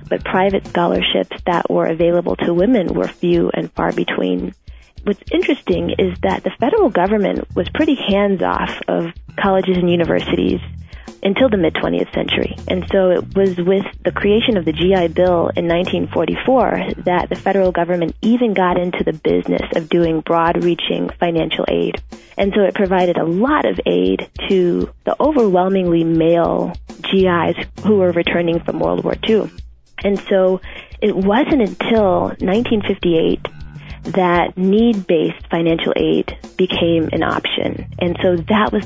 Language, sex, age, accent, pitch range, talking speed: English, female, 20-39, American, 165-195 Hz, 145 wpm